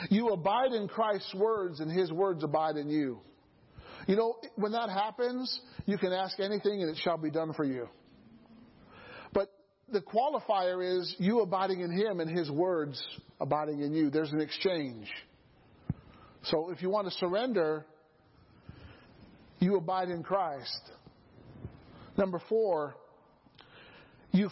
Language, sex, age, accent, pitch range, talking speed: English, male, 40-59, American, 175-240 Hz, 140 wpm